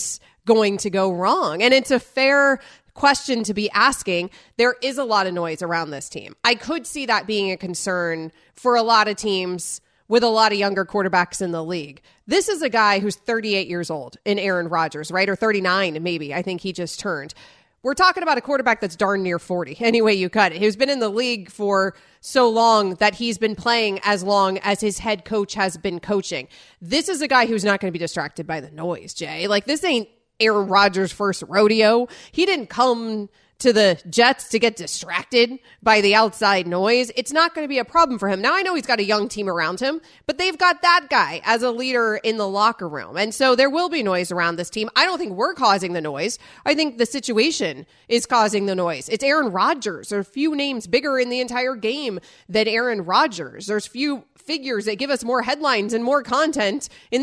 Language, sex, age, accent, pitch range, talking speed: English, female, 30-49, American, 190-250 Hz, 225 wpm